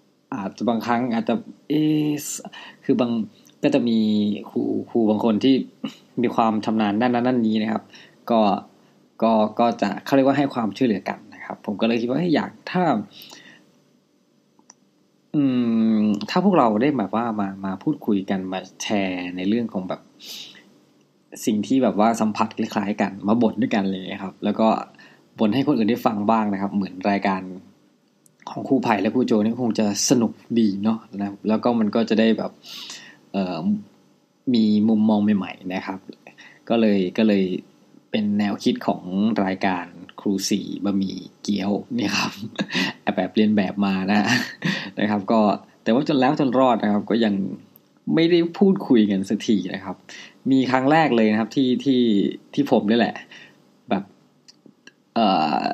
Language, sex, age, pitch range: Thai, male, 20-39, 100-120 Hz